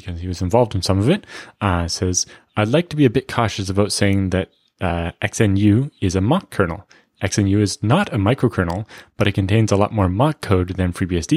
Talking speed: 215 wpm